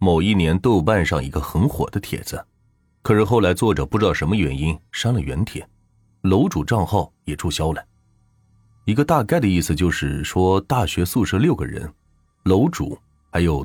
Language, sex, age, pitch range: Chinese, male, 30-49, 80-110 Hz